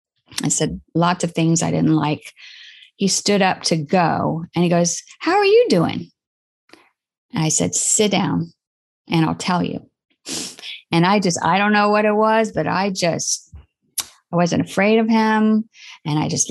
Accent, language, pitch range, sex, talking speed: American, English, 170-225 Hz, female, 175 wpm